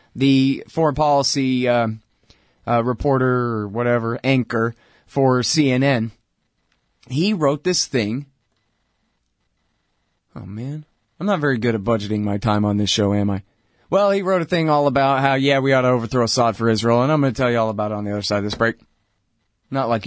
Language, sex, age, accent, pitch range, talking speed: English, male, 30-49, American, 115-160 Hz, 190 wpm